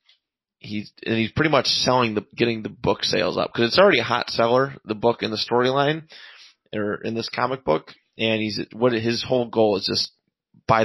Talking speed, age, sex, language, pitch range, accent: 205 wpm, 30-49, male, English, 105-120 Hz, American